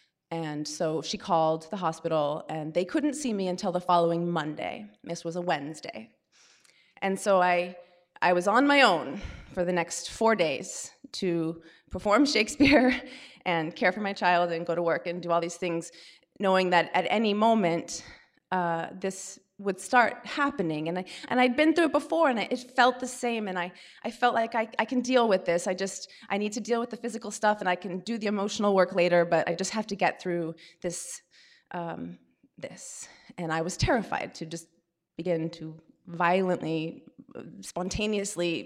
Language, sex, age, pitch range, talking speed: English, female, 30-49, 170-220 Hz, 190 wpm